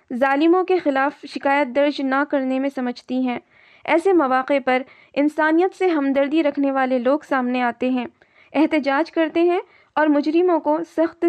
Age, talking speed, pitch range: 20-39, 155 wpm, 270-325 Hz